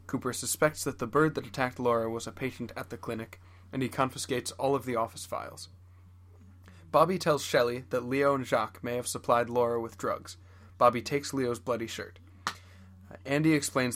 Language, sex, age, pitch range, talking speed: English, male, 20-39, 100-135 Hz, 185 wpm